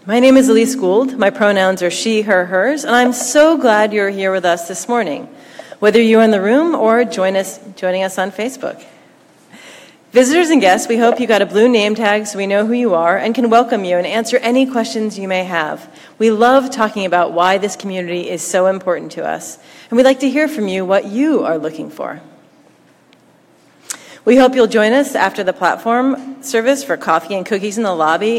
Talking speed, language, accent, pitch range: 210 wpm, English, American, 190-250 Hz